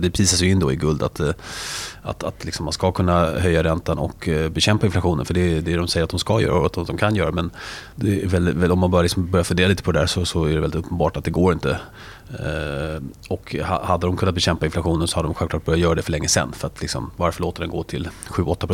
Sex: male